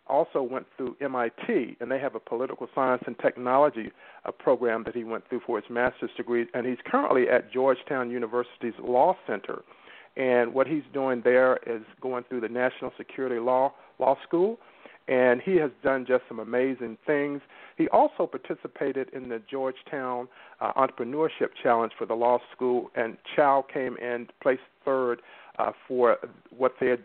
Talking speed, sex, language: 160 wpm, male, English